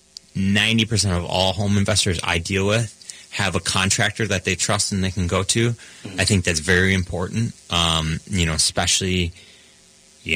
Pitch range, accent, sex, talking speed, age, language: 85-105 Hz, American, male, 170 wpm, 30-49, English